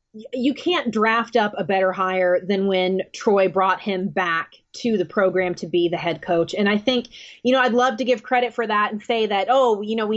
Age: 20-39